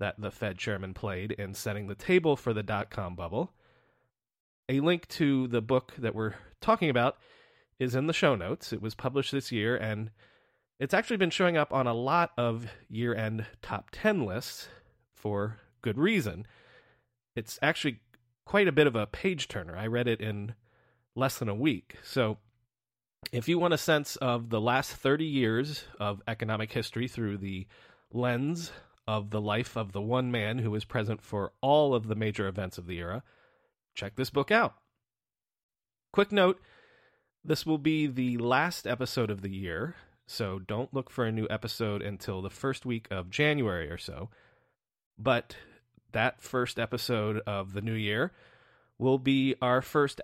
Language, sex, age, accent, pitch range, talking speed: English, male, 30-49, American, 105-135 Hz, 170 wpm